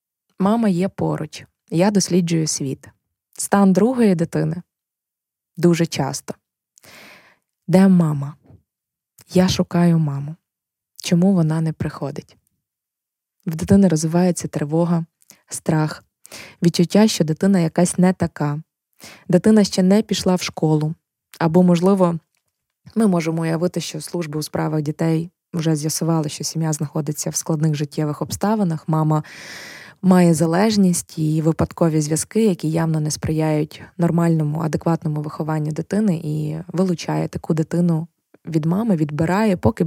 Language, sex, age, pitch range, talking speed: Ukrainian, female, 20-39, 155-180 Hz, 115 wpm